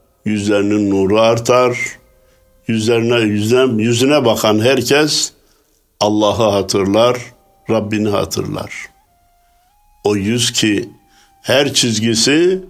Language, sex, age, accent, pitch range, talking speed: Turkish, male, 60-79, native, 105-135 Hz, 80 wpm